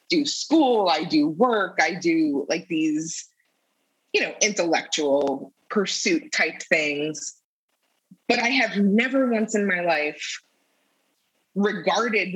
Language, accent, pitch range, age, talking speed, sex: English, American, 165-230 Hz, 20-39, 115 wpm, female